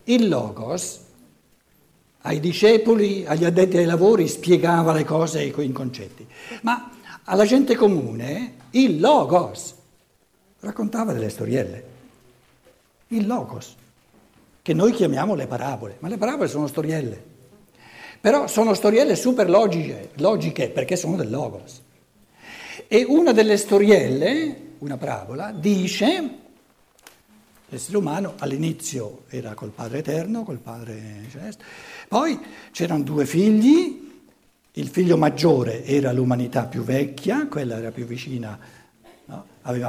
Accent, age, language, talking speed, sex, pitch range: native, 60-79, Italian, 115 wpm, male, 135-220 Hz